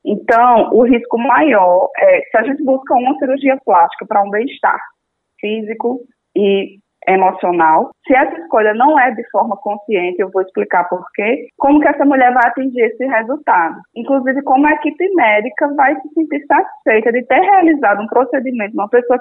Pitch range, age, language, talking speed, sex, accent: 200-270 Hz, 20-39, Portuguese, 175 wpm, female, Brazilian